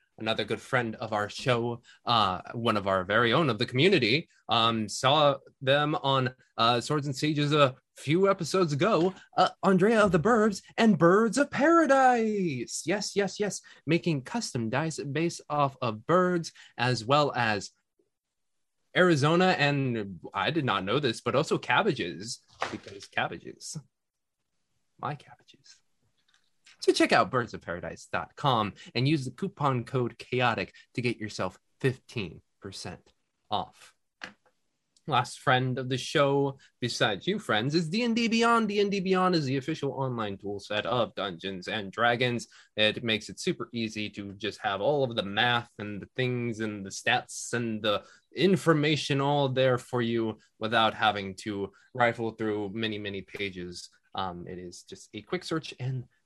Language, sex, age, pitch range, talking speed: English, male, 20-39, 110-170 Hz, 150 wpm